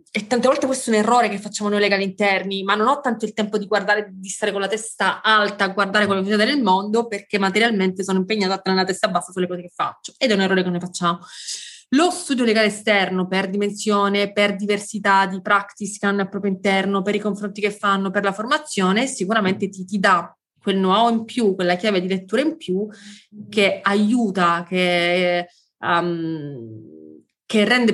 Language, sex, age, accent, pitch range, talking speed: Italian, female, 20-39, native, 190-215 Hz, 205 wpm